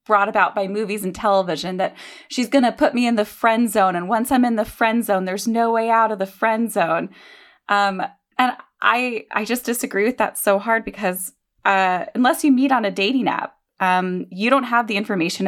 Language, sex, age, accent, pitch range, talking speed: English, female, 20-39, American, 190-250 Hz, 215 wpm